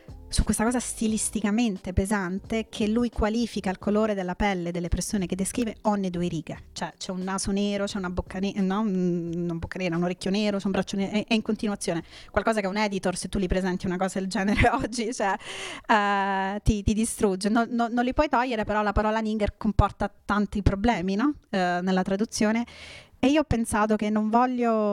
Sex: female